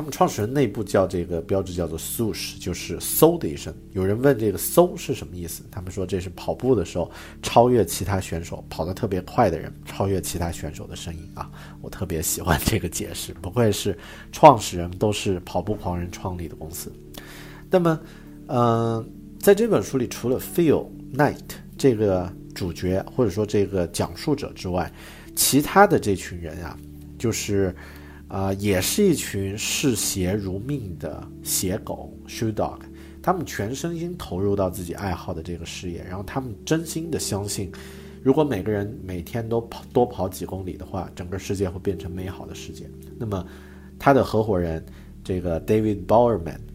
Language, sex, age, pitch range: Chinese, male, 50-69, 85-105 Hz